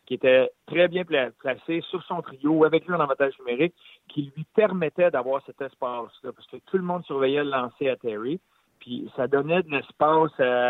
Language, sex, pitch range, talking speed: French, male, 135-180 Hz, 195 wpm